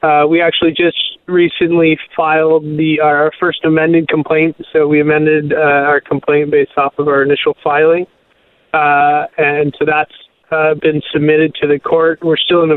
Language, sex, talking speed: English, male, 180 wpm